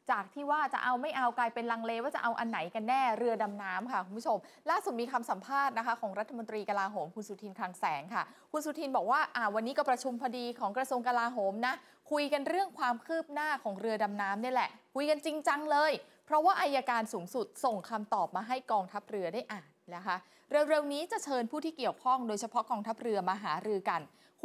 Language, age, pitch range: Thai, 20-39, 215-280 Hz